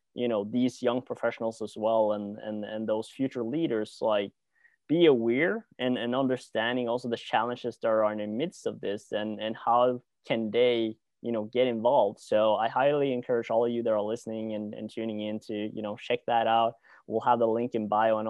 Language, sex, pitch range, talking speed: English, male, 110-125 Hz, 215 wpm